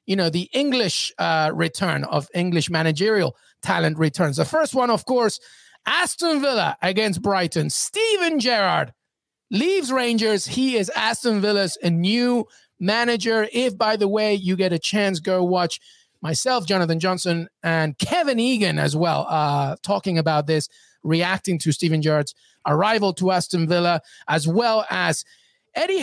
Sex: male